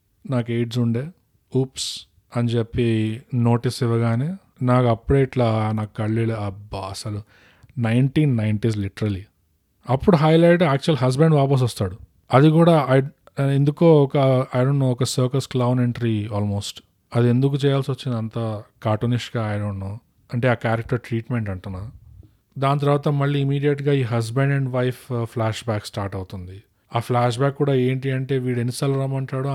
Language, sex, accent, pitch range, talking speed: Telugu, male, native, 110-140 Hz, 140 wpm